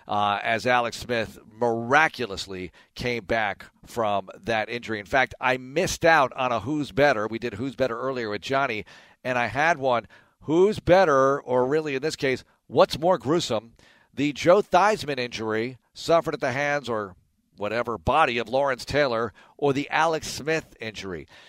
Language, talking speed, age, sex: English, 165 wpm, 50-69, male